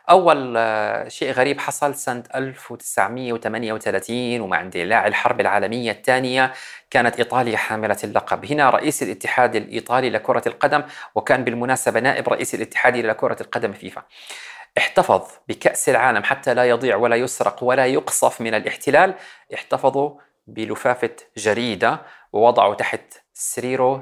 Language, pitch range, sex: Arabic, 110-130 Hz, male